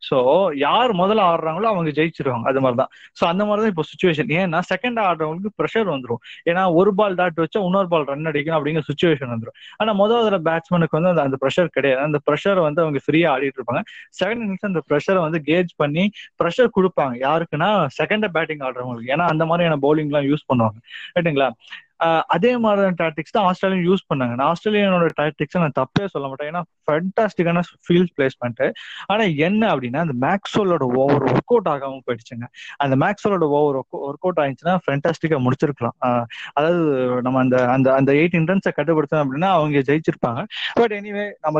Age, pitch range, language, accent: 20-39, 140-185 Hz, Tamil, native